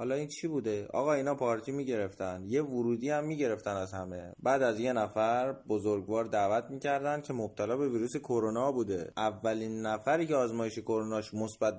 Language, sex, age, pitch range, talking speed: Persian, male, 30-49, 110-155 Hz, 170 wpm